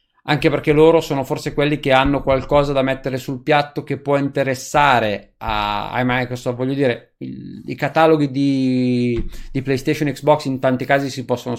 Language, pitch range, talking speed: Italian, 125-170 Hz, 170 wpm